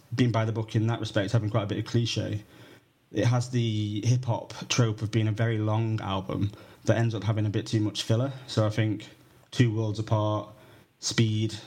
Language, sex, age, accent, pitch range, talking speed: English, male, 20-39, British, 110-125 Hz, 205 wpm